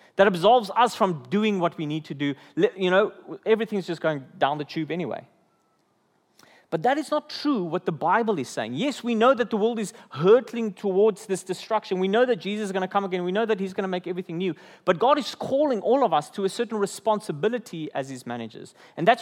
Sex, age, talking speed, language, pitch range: male, 30-49, 225 wpm, English, 170-230 Hz